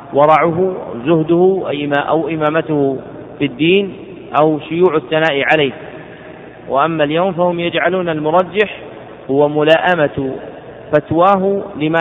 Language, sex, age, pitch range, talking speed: Arabic, male, 40-59, 140-160 Hz, 100 wpm